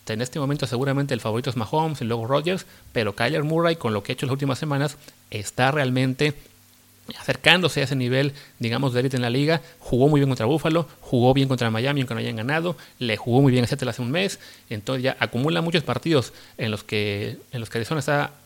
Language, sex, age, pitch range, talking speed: Spanish, male, 30-49, 120-150 Hz, 230 wpm